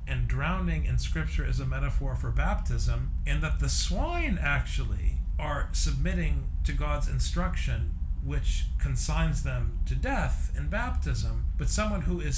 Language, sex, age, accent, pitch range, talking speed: English, male, 40-59, American, 65-80 Hz, 145 wpm